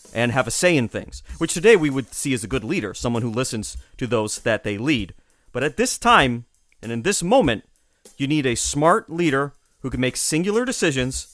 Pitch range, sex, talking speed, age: 110-160 Hz, male, 215 wpm, 30-49